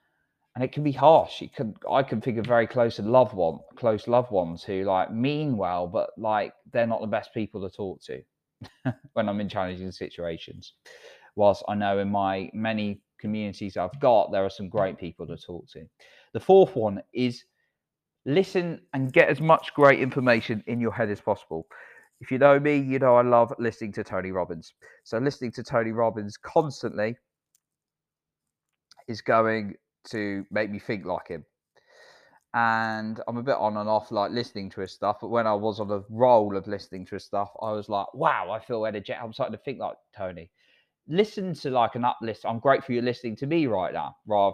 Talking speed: 200 wpm